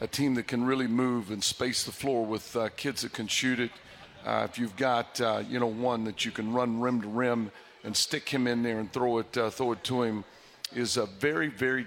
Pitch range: 110-125 Hz